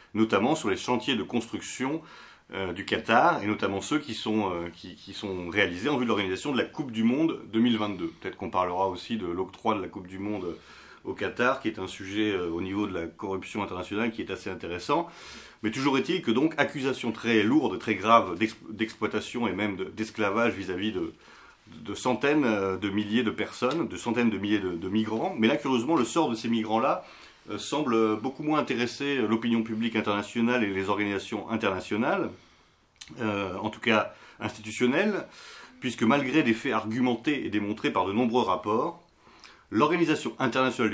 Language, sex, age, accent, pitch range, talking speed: French, male, 30-49, French, 100-120 Hz, 180 wpm